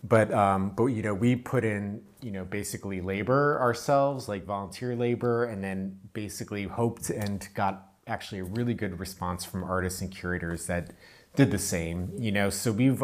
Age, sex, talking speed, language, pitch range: 30-49, male, 180 wpm, English, 95-120 Hz